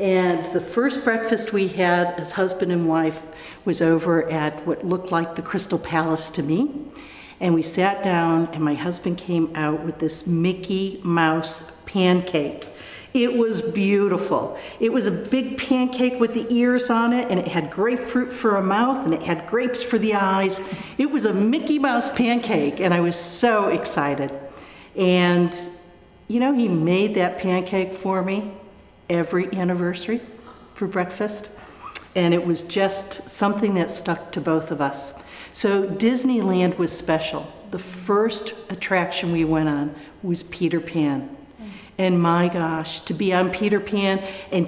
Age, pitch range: 50-69, 170-230 Hz